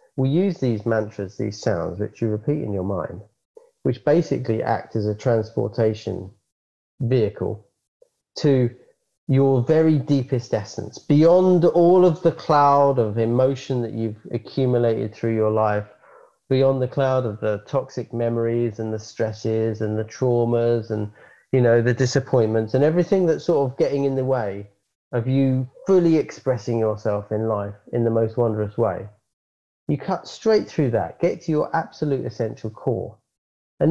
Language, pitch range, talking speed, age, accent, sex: English, 110-150 Hz, 155 wpm, 40-59, British, male